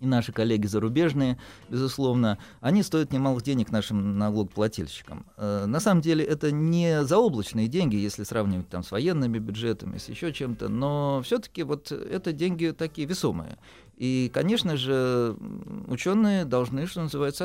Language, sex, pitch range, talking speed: Russian, male, 105-140 Hz, 140 wpm